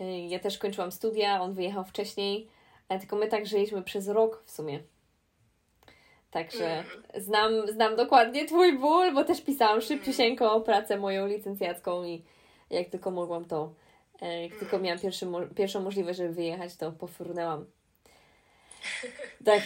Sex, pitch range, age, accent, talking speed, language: female, 185-225 Hz, 20-39, native, 135 wpm, Polish